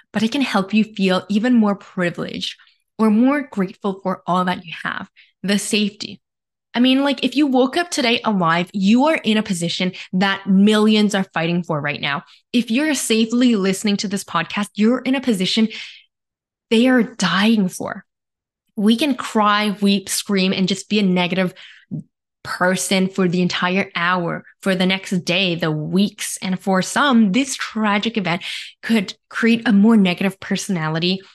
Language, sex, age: English, female, 10-29